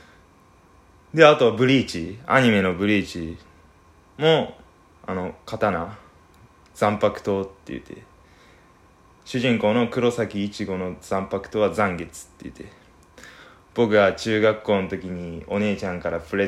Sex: male